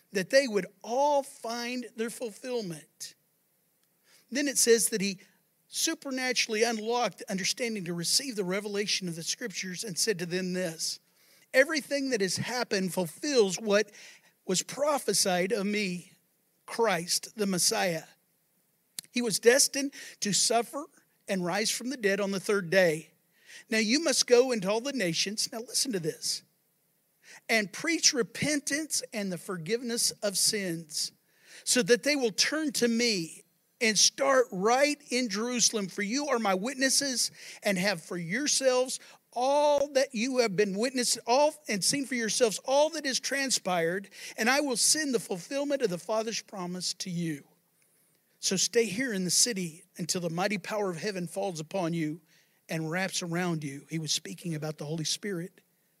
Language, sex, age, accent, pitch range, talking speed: English, male, 50-69, American, 180-245 Hz, 160 wpm